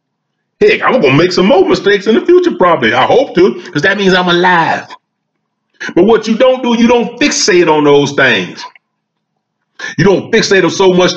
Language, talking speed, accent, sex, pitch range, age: English, 200 wpm, American, male, 155-235 Hz, 40-59